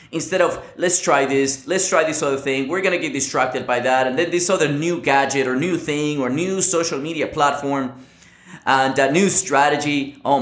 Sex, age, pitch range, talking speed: male, 20-39, 125-185 Hz, 205 wpm